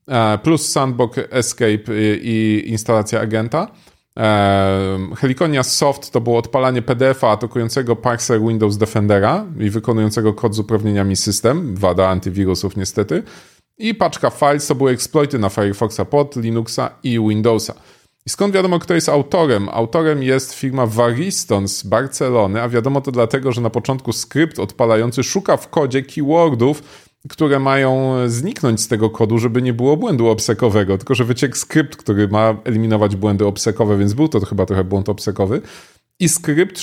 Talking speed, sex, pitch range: 150 wpm, male, 110-140 Hz